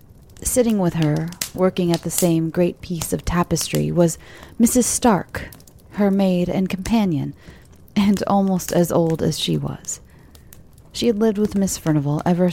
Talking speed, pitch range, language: 155 wpm, 155-205 Hz, English